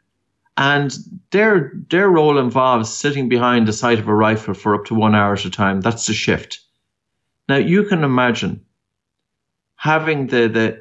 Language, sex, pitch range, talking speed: English, male, 110-145 Hz, 165 wpm